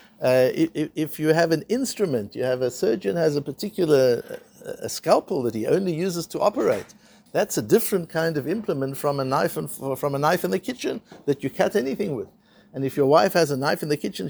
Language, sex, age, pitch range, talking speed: English, male, 60-79, 140-195 Hz, 200 wpm